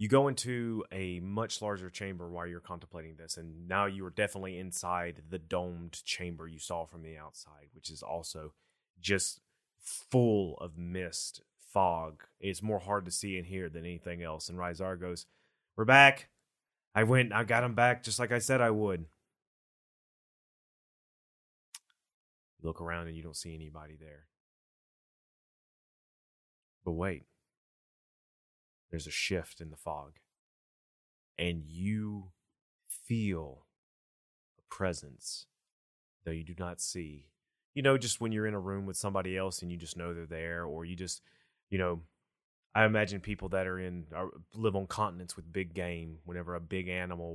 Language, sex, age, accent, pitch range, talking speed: English, male, 30-49, American, 85-105 Hz, 160 wpm